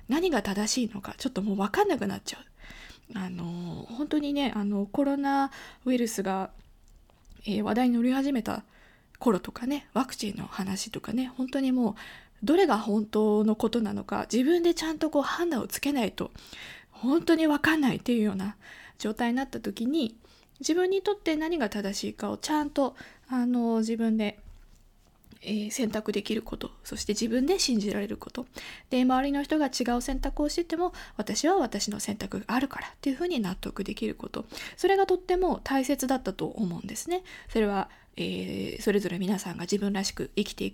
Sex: female